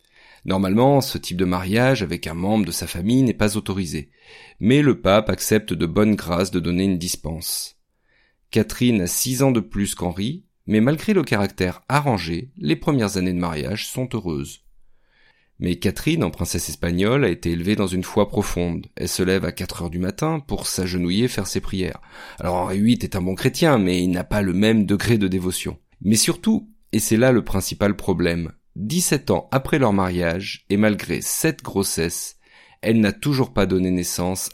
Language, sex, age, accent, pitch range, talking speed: French, male, 40-59, French, 90-110 Hz, 190 wpm